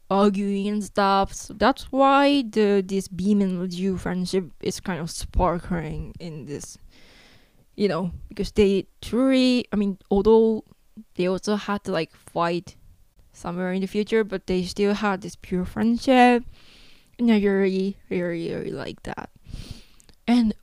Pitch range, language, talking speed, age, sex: 190-235 Hz, English, 150 wpm, 20-39, female